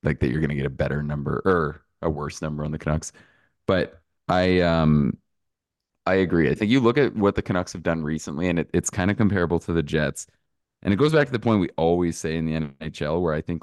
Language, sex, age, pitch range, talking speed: English, male, 20-39, 75-90 Hz, 250 wpm